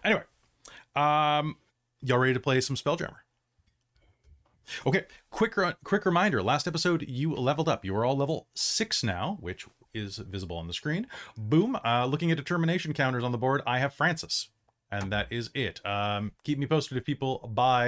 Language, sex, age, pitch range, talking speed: English, male, 30-49, 120-155 Hz, 180 wpm